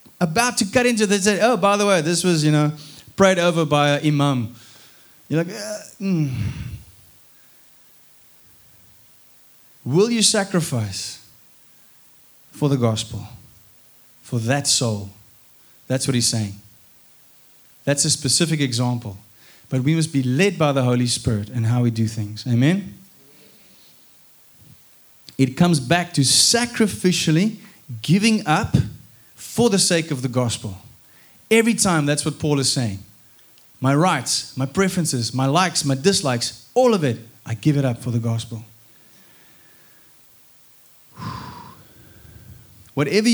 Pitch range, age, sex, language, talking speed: 115-170 Hz, 20-39, male, English, 130 wpm